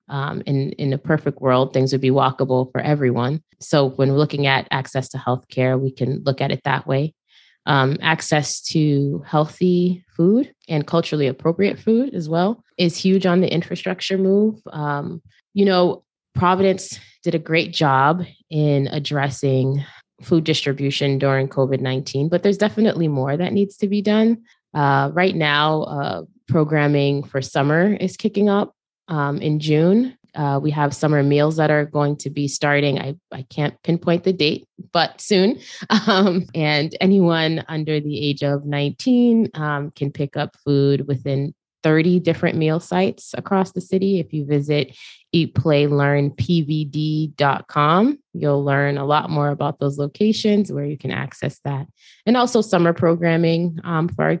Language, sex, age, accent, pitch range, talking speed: English, female, 20-39, American, 140-180 Hz, 160 wpm